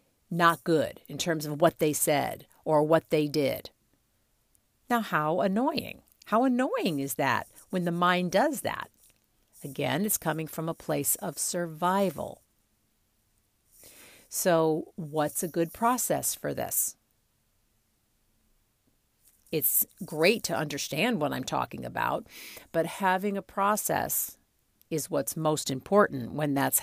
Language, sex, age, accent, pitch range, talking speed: English, female, 50-69, American, 150-185 Hz, 130 wpm